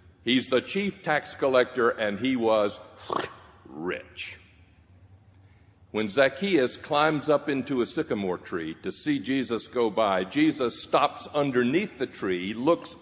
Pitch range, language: 95-130 Hz, English